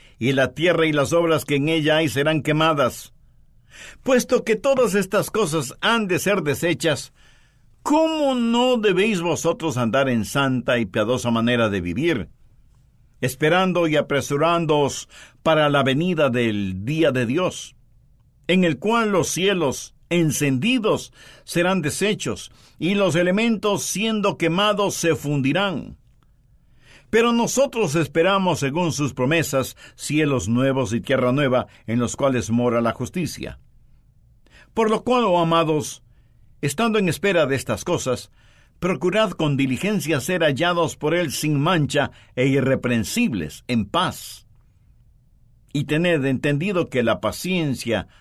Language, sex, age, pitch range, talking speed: Spanish, male, 50-69, 125-175 Hz, 130 wpm